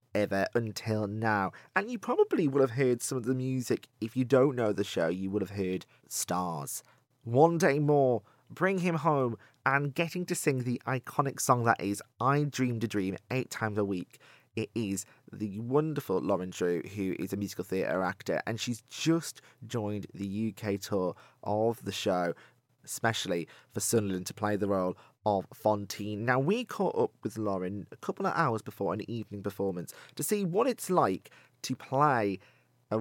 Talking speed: 180 wpm